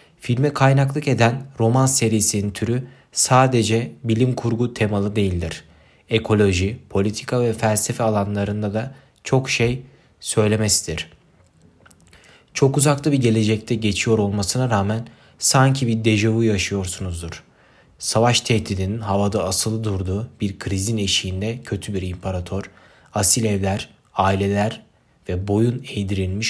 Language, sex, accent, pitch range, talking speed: Turkish, male, native, 100-125 Hz, 110 wpm